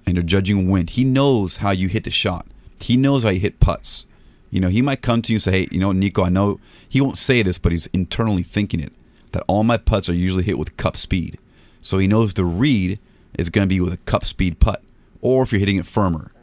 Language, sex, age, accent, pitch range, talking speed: English, male, 30-49, American, 90-110 Hz, 260 wpm